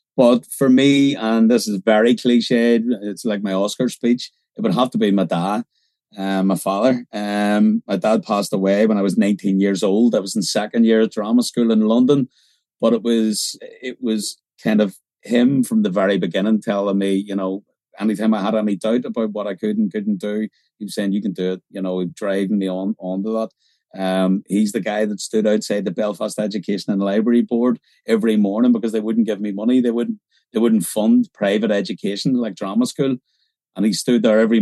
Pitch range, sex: 105-125 Hz, male